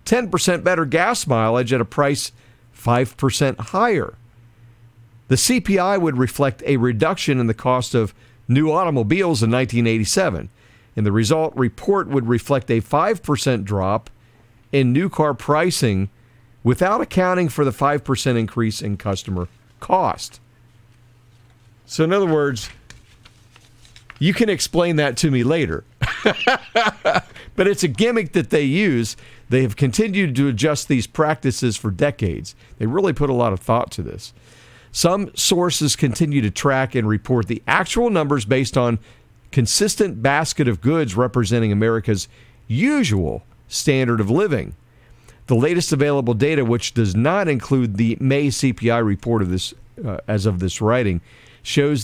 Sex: male